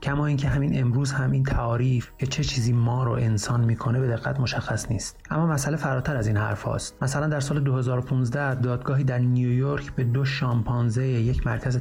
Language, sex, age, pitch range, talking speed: Persian, male, 30-49, 115-135 Hz, 190 wpm